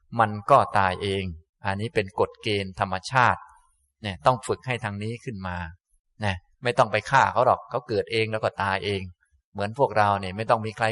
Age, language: 20-39, Thai